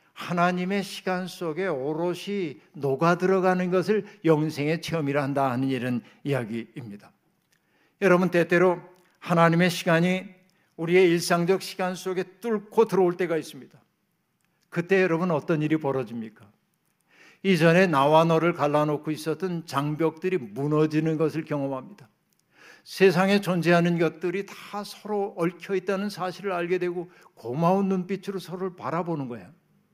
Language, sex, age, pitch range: Korean, male, 60-79, 160-190 Hz